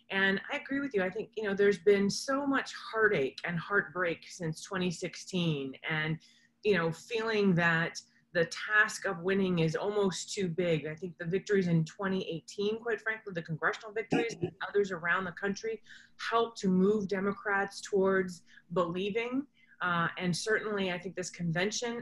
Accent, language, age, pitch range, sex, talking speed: American, English, 30-49, 175-220 Hz, female, 165 wpm